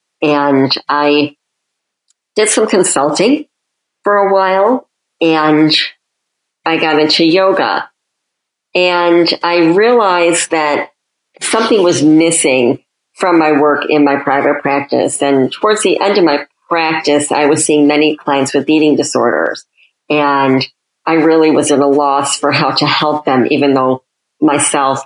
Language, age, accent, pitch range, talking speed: English, 50-69, American, 140-165 Hz, 135 wpm